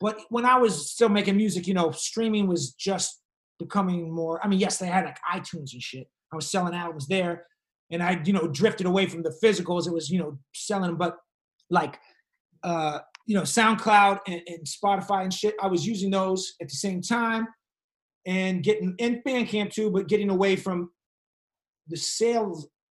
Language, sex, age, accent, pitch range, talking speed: English, male, 30-49, American, 175-210 Hz, 190 wpm